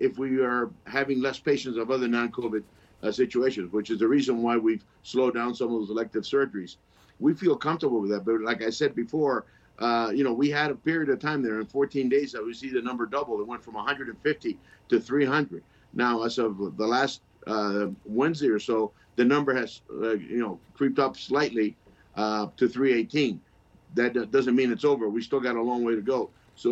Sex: male